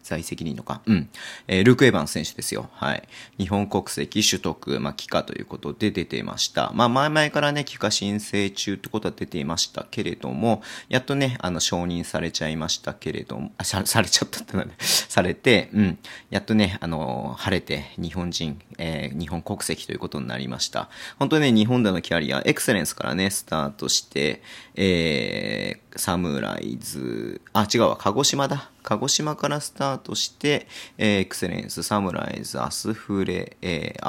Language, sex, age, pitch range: Japanese, male, 40-59, 90-125 Hz